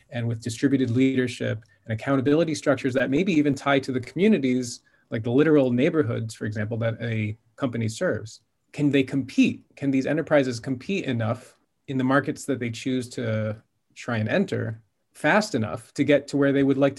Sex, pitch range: male, 120-150 Hz